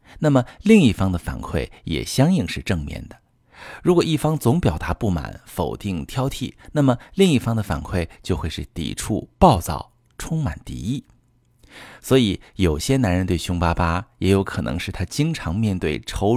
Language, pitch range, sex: Chinese, 85-125 Hz, male